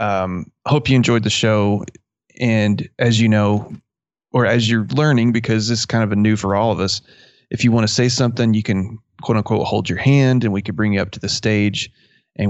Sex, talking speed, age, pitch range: male, 230 wpm, 20-39, 100-120 Hz